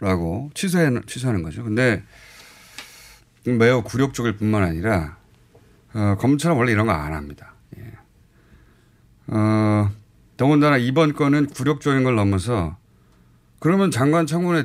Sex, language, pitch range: male, Korean, 100-140 Hz